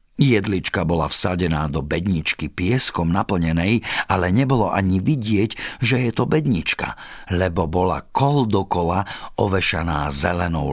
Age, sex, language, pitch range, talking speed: 50-69, male, Slovak, 85-115 Hz, 115 wpm